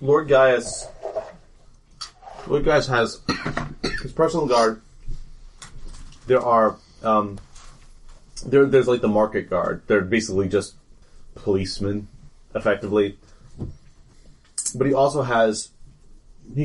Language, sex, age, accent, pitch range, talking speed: English, male, 30-49, American, 95-125 Hz, 95 wpm